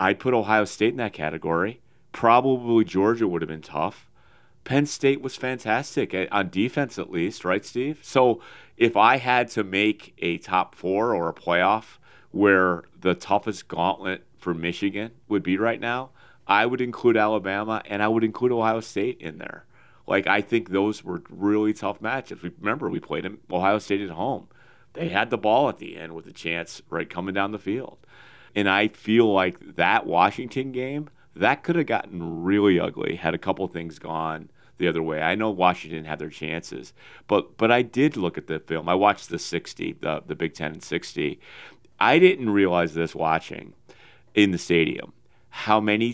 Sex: male